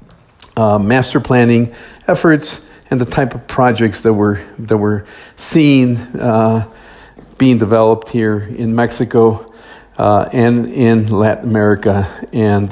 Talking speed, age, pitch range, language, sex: 125 wpm, 50-69, 105-135 Hz, English, male